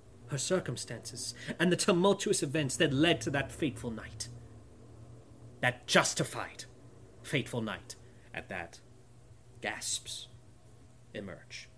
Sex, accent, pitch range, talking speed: male, British, 120-175 Hz, 100 wpm